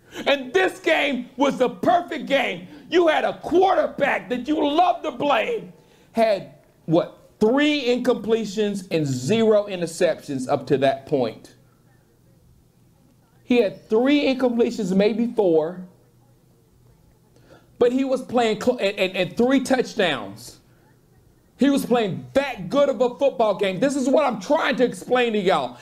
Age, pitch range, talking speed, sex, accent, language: 40-59, 185-255 Hz, 140 wpm, male, American, English